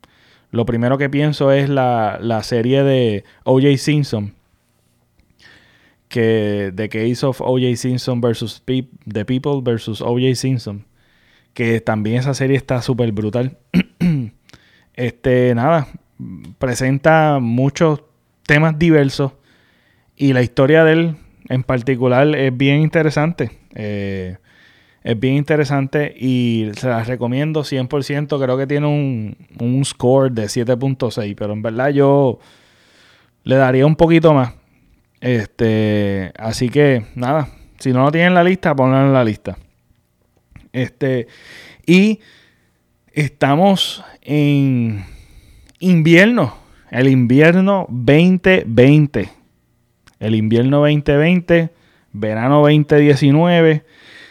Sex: male